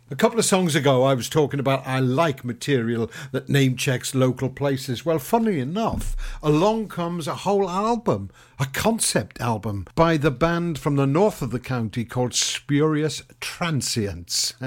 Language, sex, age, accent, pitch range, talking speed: English, male, 60-79, British, 125-150 Hz, 160 wpm